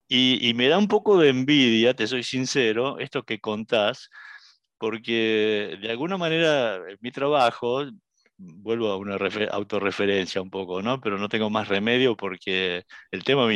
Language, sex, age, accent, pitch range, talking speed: Spanish, male, 50-69, Argentinian, 100-125 Hz, 155 wpm